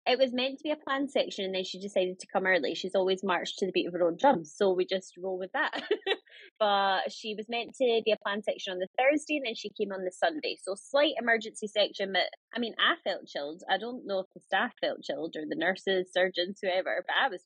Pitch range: 190-245 Hz